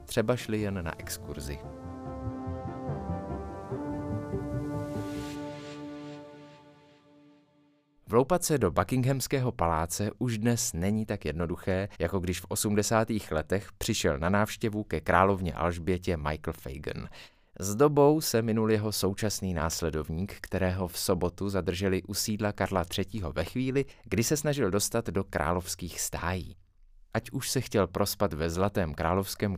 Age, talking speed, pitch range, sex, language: 30-49, 120 wpm, 85-115 Hz, male, Czech